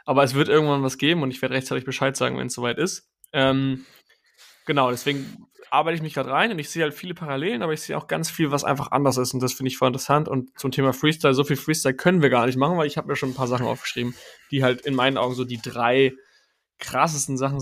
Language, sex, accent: German, male, German